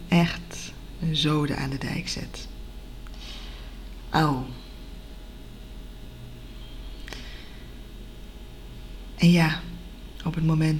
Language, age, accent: Dutch, 20-39, Dutch